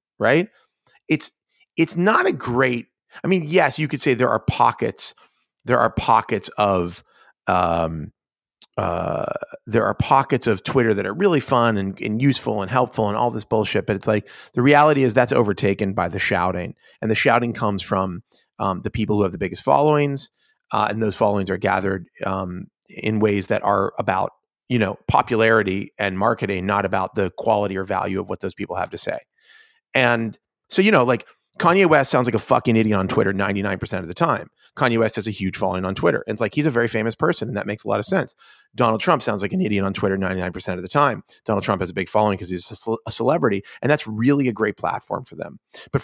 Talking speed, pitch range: 215 wpm, 100-125 Hz